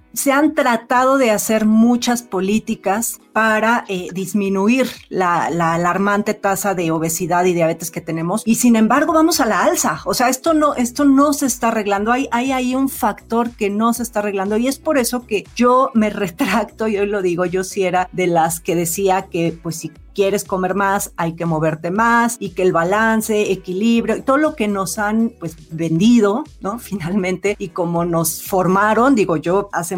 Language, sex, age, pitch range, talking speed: Spanish, female, 40-59, 185-240 Hz, 195 wpm